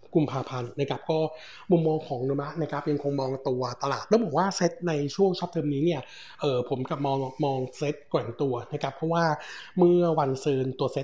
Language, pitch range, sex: Thai, 135-165 Hz, male